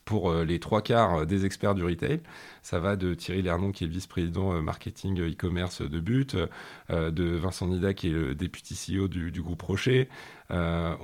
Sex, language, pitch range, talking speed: male, French, 85-105 Hz, 185 wpm